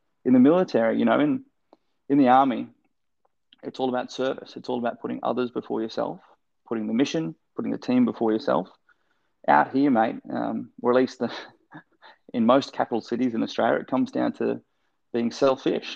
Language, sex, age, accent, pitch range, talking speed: English, male, 20-39, Australian, 115-135 Hz, 180 wpm